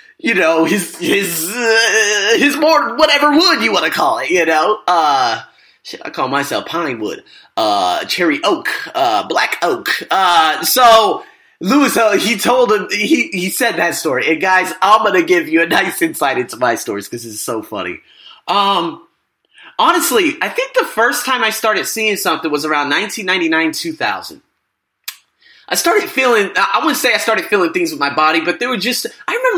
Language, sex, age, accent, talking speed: English, male, 30-49, American, 185 wpm